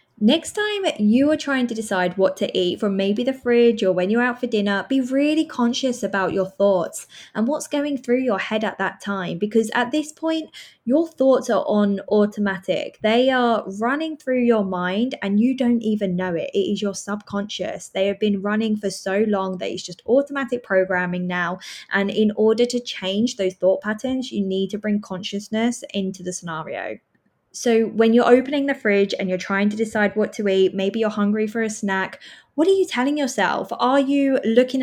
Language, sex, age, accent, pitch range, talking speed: English, female, 20-39, British, 190-245 Hz, 200 wpm